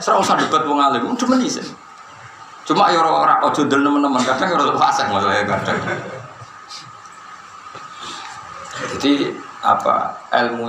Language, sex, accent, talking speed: Indonesian, male, native, 110 wpm